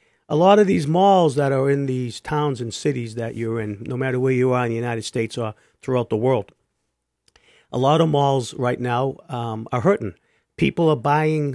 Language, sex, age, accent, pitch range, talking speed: English, male, 50-69, American, 120-155 Hz, 210 wpm